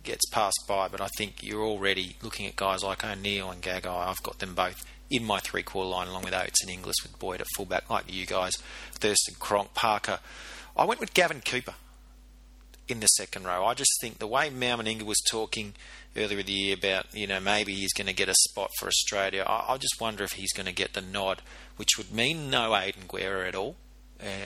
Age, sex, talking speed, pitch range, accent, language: 30-49, male, 225 wpm, 95-110 Hz, Australian, English